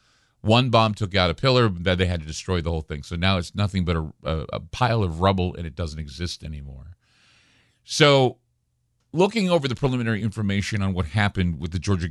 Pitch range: 90-120 Hz